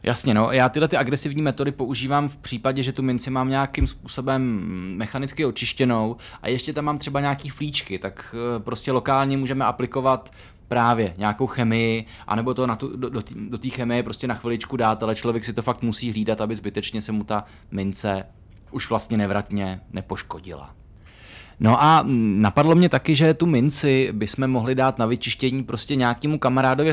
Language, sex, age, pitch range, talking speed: Czech, male, 20-39, 110-135 Hz, 175 wpm